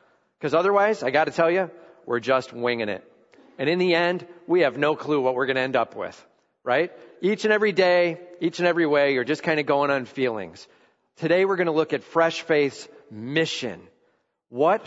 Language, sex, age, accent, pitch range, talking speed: English, male, 40-59, American, 130-165 Hz, 210 wpm